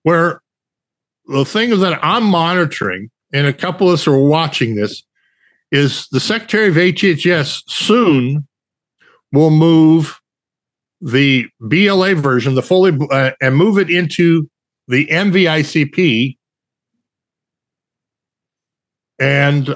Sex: male